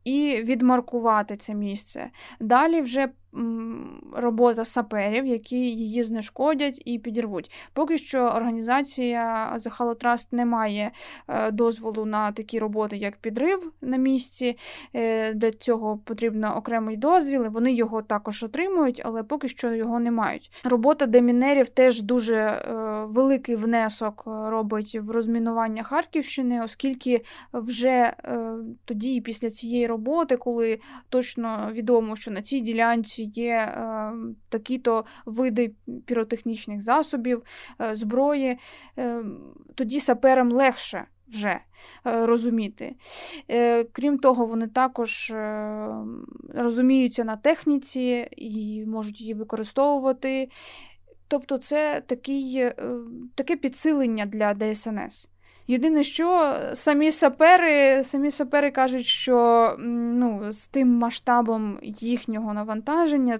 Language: Ukrainian